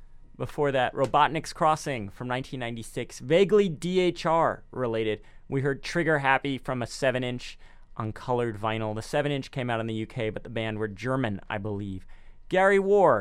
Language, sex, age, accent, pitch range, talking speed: English, male, 30-49, American, 110-145 Hz, 150 wpm